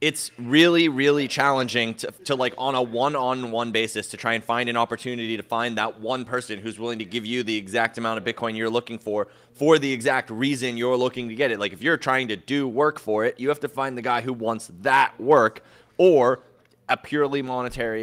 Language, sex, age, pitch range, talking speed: English, male, 20-39, 110-135 Hz, 230 wpm